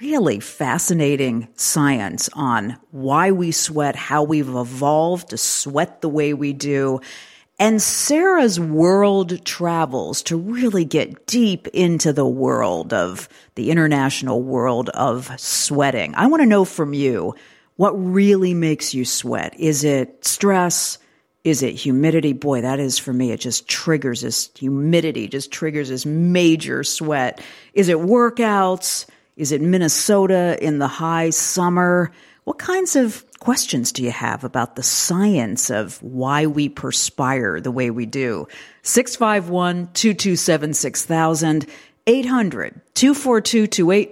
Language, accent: English, American